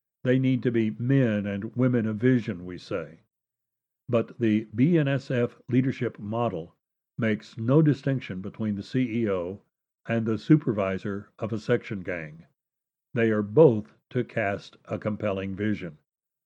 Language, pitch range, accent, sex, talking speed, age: English, 105-130 Hz, American, male, 135 wpm, 60-79